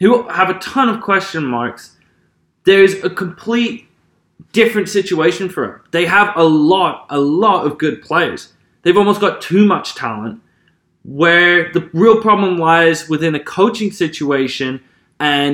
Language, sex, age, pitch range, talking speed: English, male, 20-39, 145-185 Hz, 150 wpm